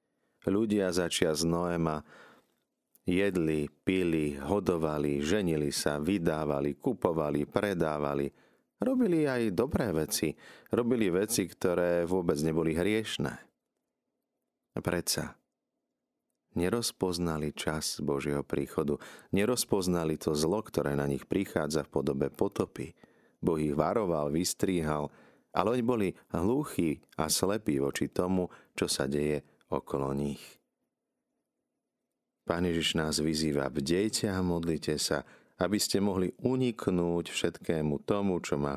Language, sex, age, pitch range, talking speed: Slovak, male, 40-59, 75-95 Hz, 105 wpm